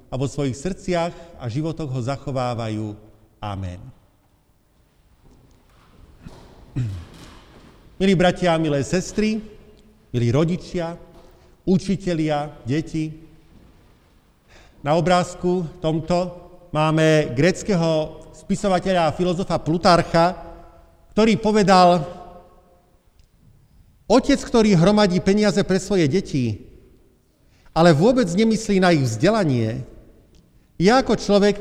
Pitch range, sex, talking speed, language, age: 135-185 Hz, male, 85 wpm, Slovak, 50-69